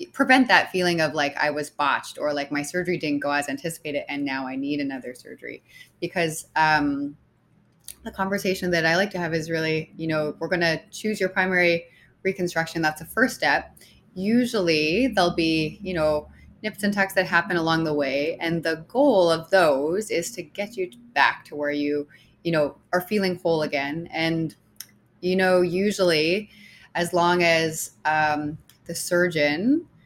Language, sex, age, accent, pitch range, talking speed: English, female, 20-39, American, 150-180 Hz, 175 wpm